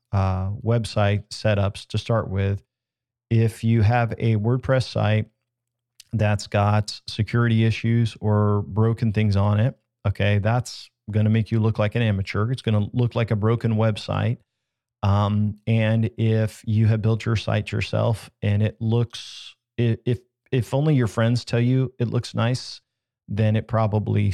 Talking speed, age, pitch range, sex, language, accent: 160 wpm, 40-59, 105-120 Hz, male, English, American